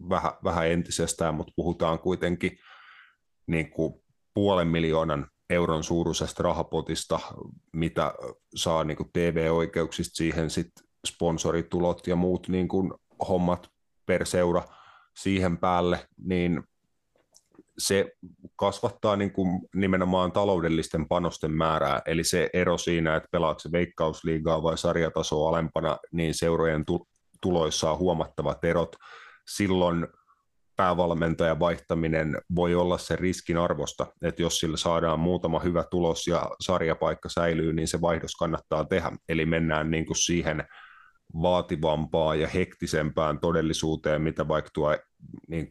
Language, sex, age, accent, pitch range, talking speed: Finnish, male, 30-49, native, 80-90 Hz, 115 wpm